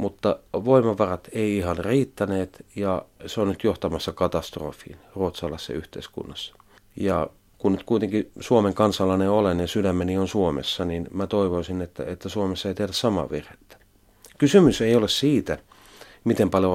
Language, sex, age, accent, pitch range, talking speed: Finnish, male, 40-59, native, 90-105 Hz, 145 wpm